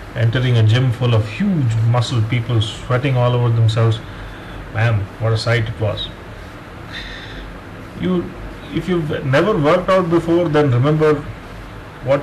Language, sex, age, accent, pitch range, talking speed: English, male, 30-49, Indian, 110-140 Hz, 135 wpm